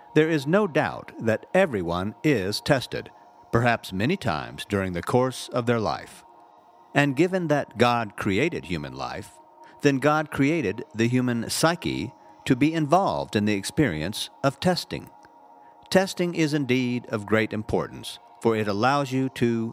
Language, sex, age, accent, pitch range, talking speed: English, male, 50-69, American, 105-145 Hz, 150 wpm